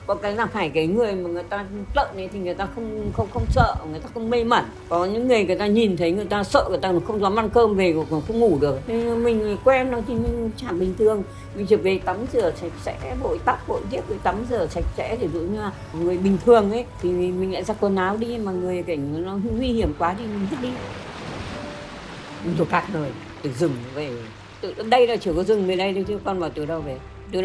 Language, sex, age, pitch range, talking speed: Vietnamese, female, 60-79, 170-225 Hz, 250 wpm